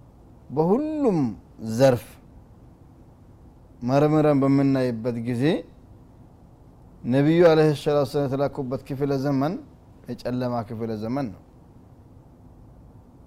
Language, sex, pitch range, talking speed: Amharic, male, 125-155 Hz, 70 wpm